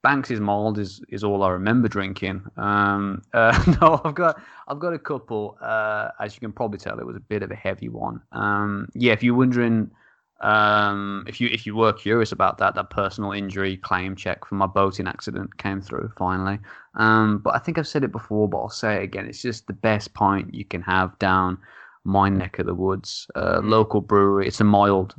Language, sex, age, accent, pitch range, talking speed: English, male, 20-39, British, 95-110 Hz, 215 wpm